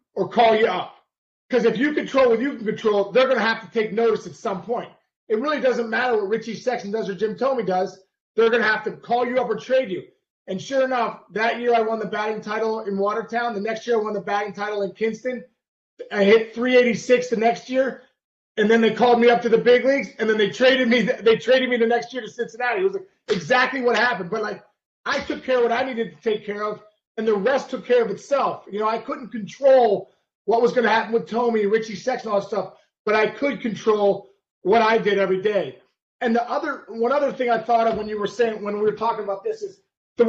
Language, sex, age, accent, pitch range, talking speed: English, male, 30-49, American, 210-245 Hz, 255 wpm